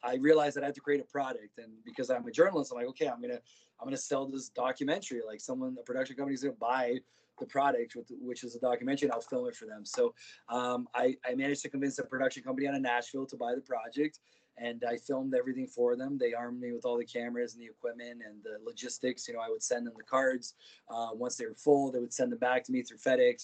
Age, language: 20-39, English